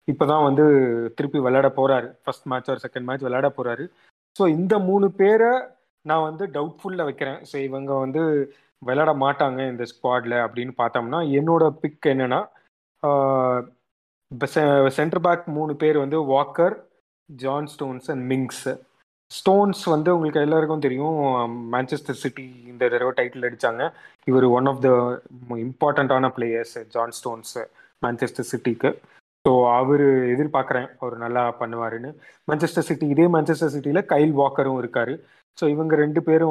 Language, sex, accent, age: Tamil, male, native, 20-39